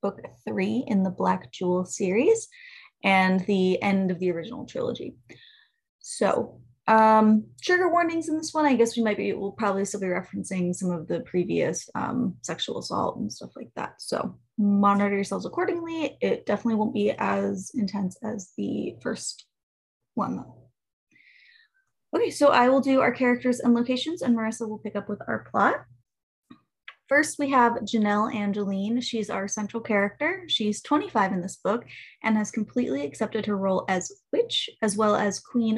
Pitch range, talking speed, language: 195-260 Hz, 170 wpm, English